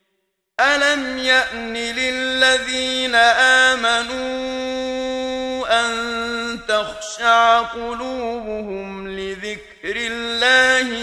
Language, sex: Arabic, male